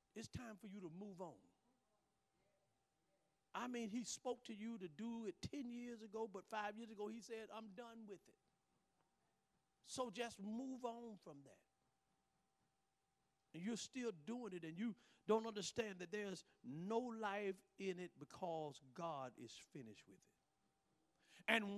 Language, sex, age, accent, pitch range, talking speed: English, male, 50-69, American, 160-220 Hz, 155 wpm